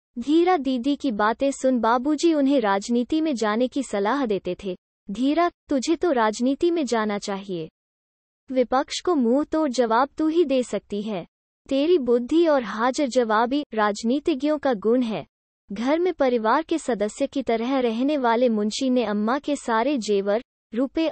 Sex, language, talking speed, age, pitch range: female, Hindi, 160 wpm, 20-39, 225-300 Hz